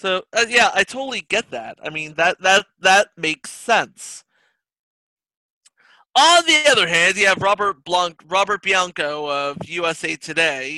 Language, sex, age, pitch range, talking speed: English, male, 30-49, 155-195 Hz, 150 wpm